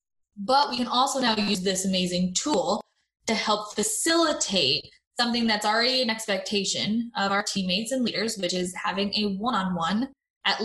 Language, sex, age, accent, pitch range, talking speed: English, female, 20-39, American, 195-255 Hz, 160 wpm